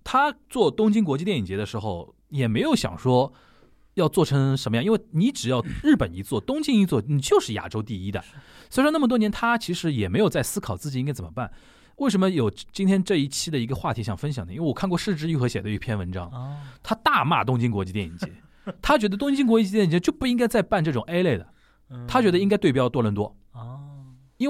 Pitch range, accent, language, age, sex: 115-175 Hz, native, Chinese, 20-39, male